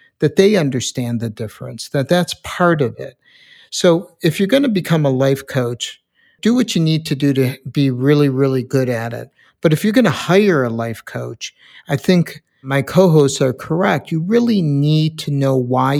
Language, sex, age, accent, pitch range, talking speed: English, male, 60-79, American, 130-165 Hz, 200 wpm